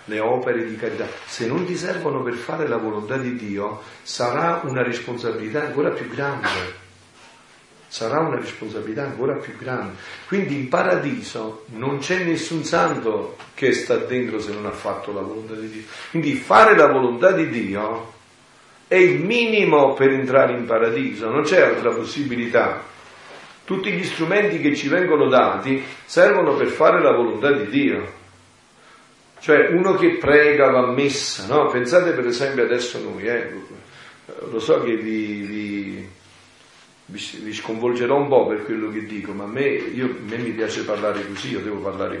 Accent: native